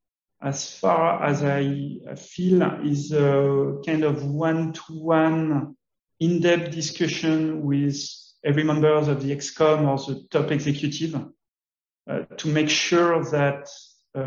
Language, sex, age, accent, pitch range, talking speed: English, male, 40-59, French, 140-165 Hz, 120 wpm